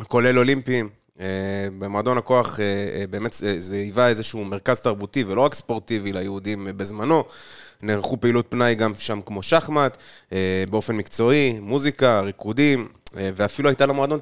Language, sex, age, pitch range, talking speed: Hebrew, male, 20-39, 100-125 Hz, 120 wpm